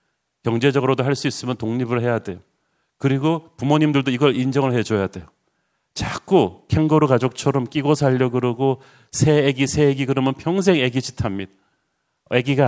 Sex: male